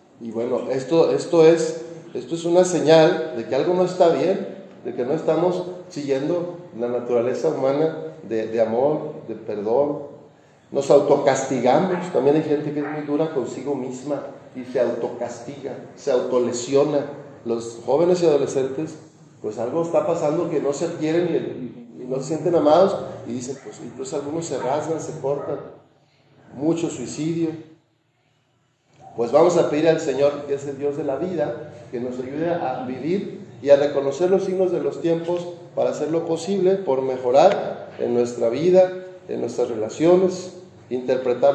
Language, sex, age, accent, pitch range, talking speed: Spanish, male, 40-59, Mexican, 130-165 Hz, 160 wpm